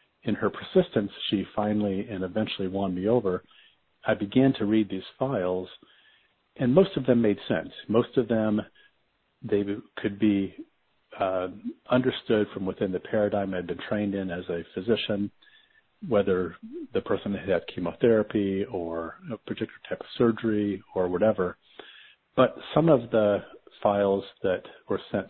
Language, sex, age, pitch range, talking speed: English, male, 50-69, 90-105 Hz, 150 wpm